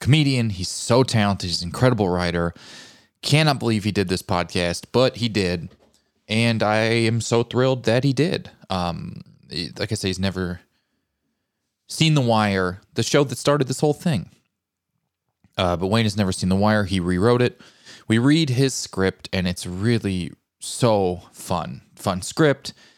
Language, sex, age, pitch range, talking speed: English, male, 20-39, 90-120 Hz, 165 wpm